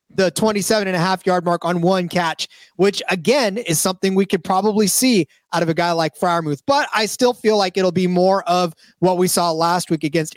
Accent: American